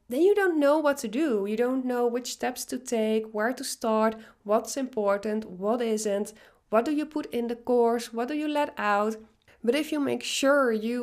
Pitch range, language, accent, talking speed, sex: 190-240 Hz, English, Dutch, 210 wpm, female